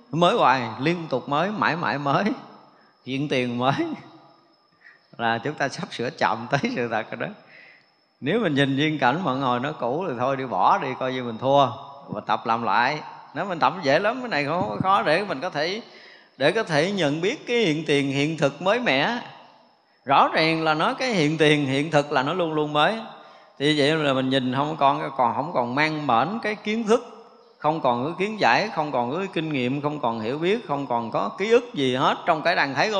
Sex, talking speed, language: male, 225 wpm, Vietnamese